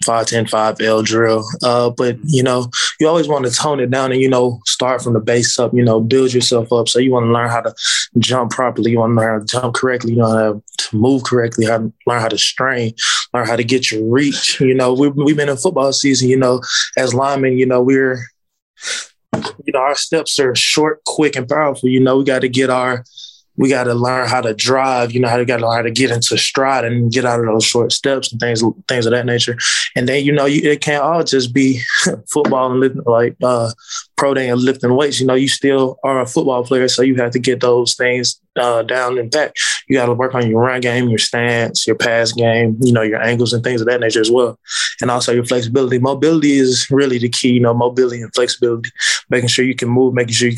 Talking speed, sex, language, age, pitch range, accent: 250 wpm, male, English, 20-39, 120-130 Hz, American